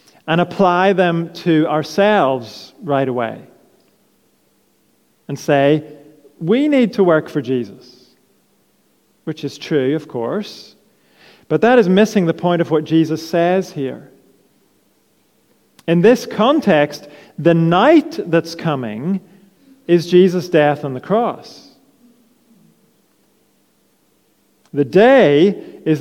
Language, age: English, 40-59